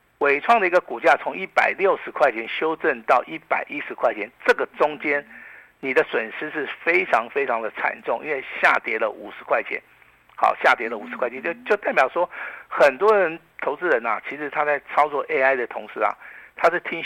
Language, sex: Chinese, male